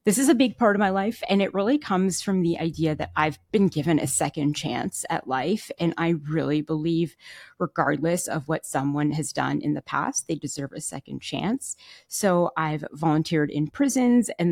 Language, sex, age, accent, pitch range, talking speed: English, female, 30-49, American, 155-200 Hz, 200 wpm